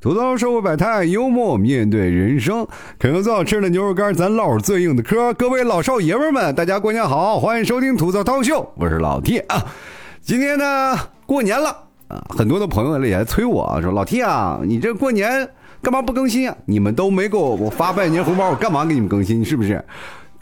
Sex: male